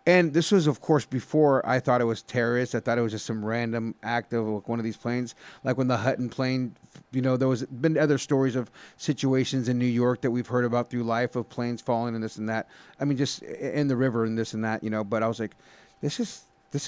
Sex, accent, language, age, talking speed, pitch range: male, American, English, 30-49, 265 wpm, 125-150 Hz